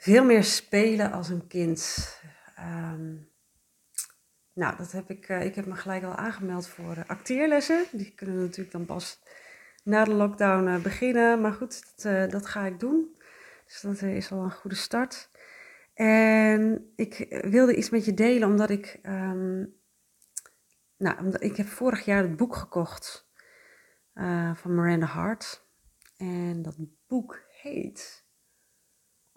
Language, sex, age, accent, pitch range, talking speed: Dutch, female, 30-49, Dutch, 170-215 Hz, 150 wpm